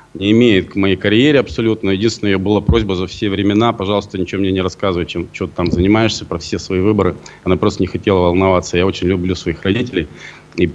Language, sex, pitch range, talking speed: Russian, male, 100-130 Hz, 205 wpm